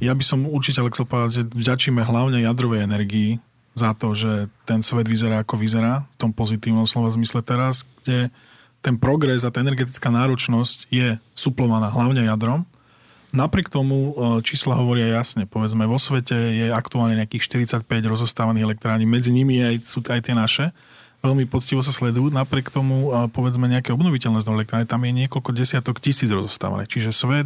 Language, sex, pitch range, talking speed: Slovak, male, 115-130 Hz, 160 wpm